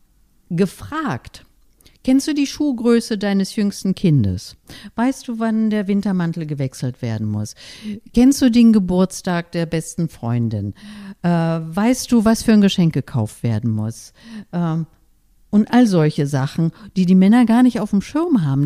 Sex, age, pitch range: female, 50-69, 160-230 Hz